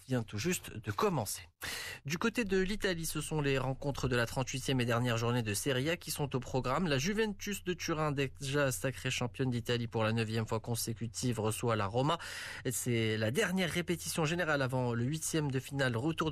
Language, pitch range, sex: Arabic, 115-155 Hz, male